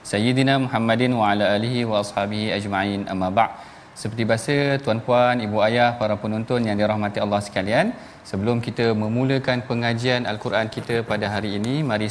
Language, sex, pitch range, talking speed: Malayalam, male, 110-135 Hz, 155 wpm